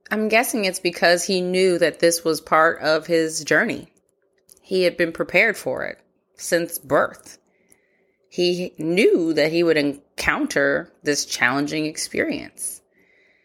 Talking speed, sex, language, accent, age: 135 wpm, female, English, American, 20-39